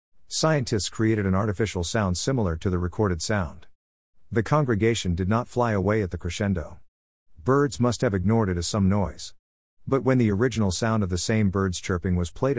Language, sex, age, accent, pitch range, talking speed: English, male, 50-69, American, 90-115 Hz, 185 wpm